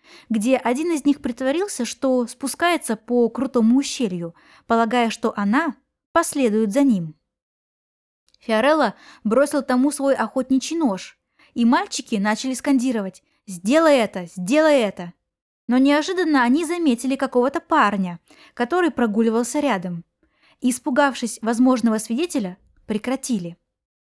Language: Russian